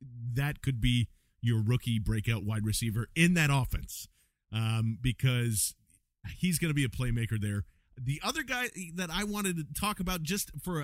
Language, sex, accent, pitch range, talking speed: English, male, American, 115-155 Hz, 170 wpm